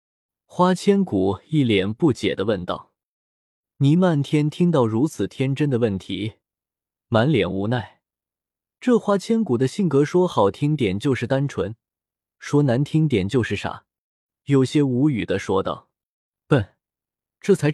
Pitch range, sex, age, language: 110-165 Hz, male, 20-39, Chinese